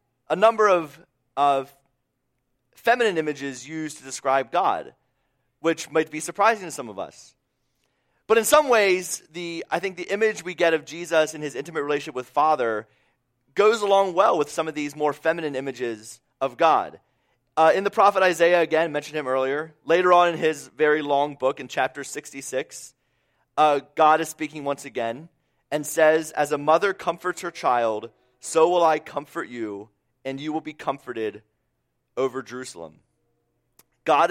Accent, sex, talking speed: American, male, 165 wpm